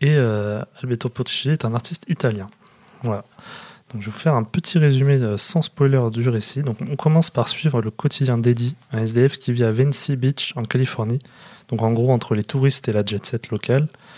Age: 20-39